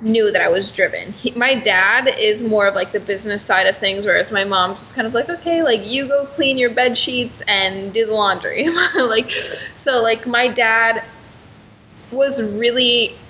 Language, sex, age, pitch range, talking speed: English, female, 10-29, 220-290 Hz, 190 wpm